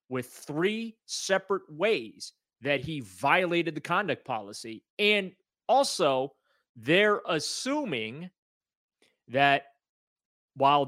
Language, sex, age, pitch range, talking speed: English, male, 30-49, 125-145 Hz, 90 wpm